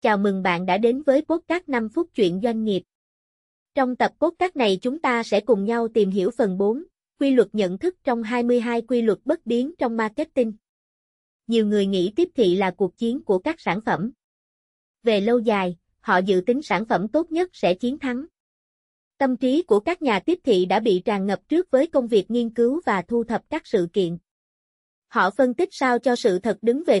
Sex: female